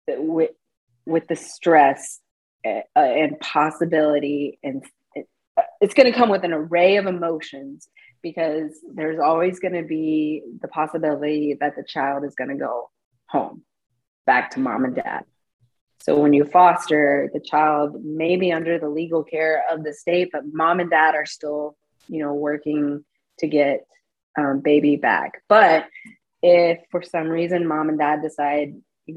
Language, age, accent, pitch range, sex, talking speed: English, 30-49, American, 145-170 Hz, female, 160 wpm